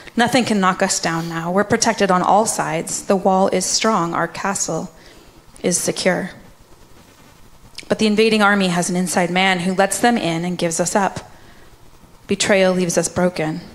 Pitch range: 175-205 Hz